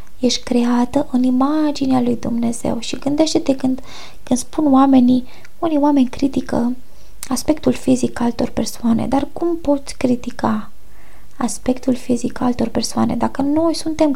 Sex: female